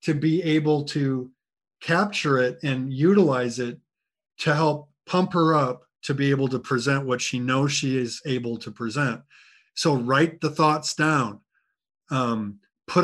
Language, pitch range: English, 130-180 Hz